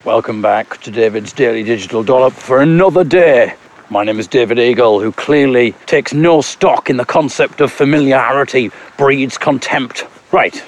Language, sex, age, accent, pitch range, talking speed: English, male, 40-59, British, 125-180 Hz, 155 wpm